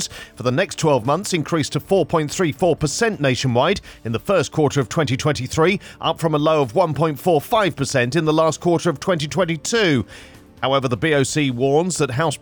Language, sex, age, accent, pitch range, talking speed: English, male, 40-59, British, 135-170 Hz, 160 wpm